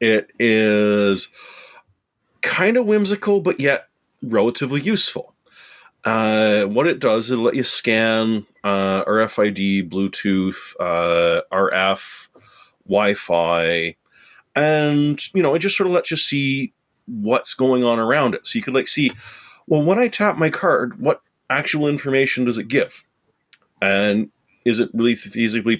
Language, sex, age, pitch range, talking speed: English, male, 30-49, 95-130 Hz, 140 wpm